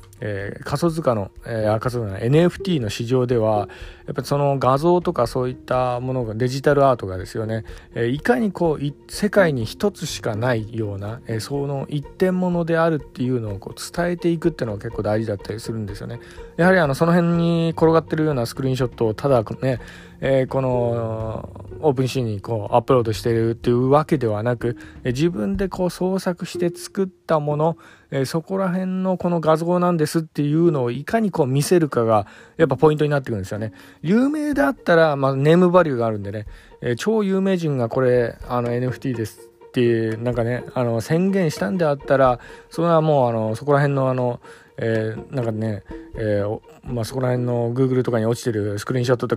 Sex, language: male, Japanese